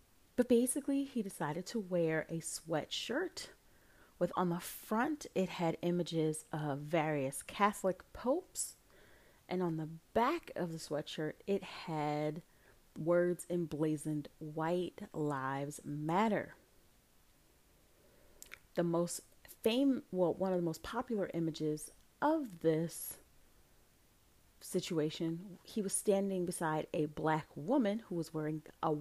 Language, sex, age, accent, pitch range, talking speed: English, female, 30-49, American, 155-200 Hz, 120 wpm